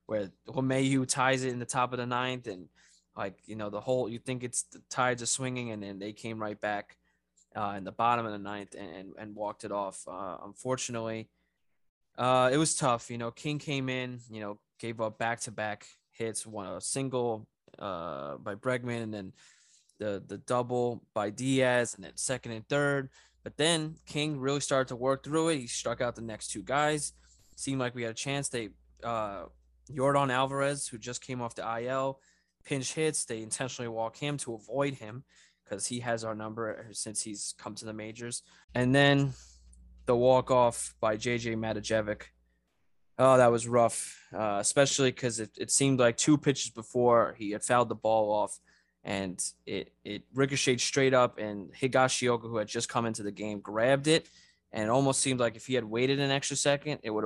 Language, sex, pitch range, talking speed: English, male, 110-130 Hz, 200 wpm